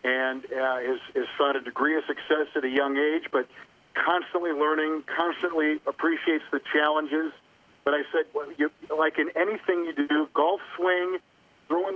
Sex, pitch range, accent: male, 150-185 Hz, American